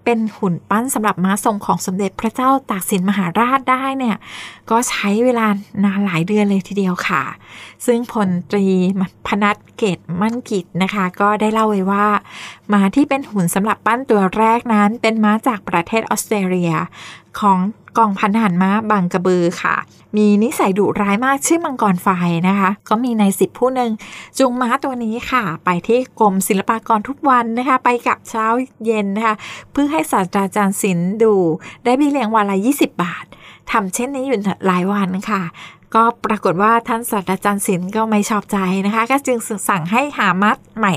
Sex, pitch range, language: female, 195-235 Hz, Thai